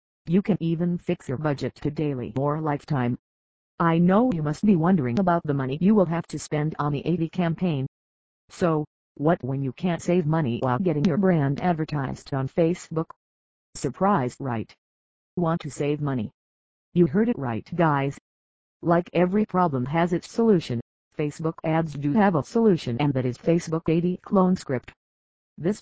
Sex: female